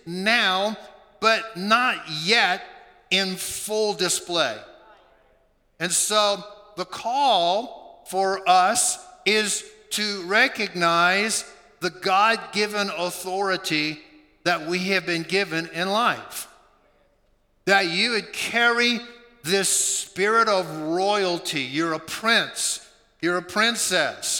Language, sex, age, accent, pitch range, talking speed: English, male, 50-69, American, 180-215 Hz, 100 wpm